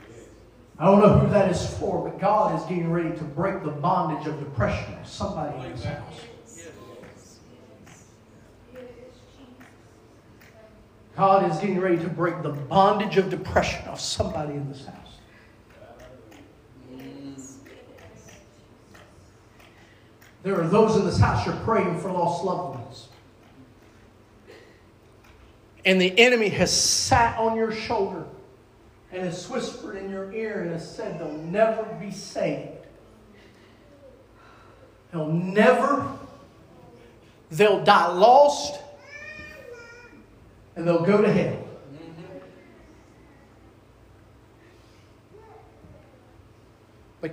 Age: 40-59